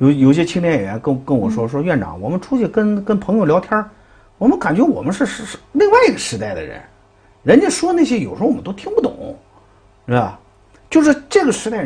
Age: 50-69